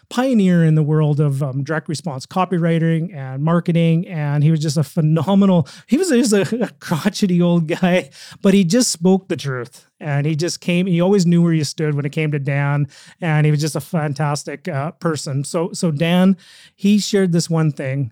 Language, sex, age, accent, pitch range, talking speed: English, male, 30-49, American, 145-175 Hz, 200 wpm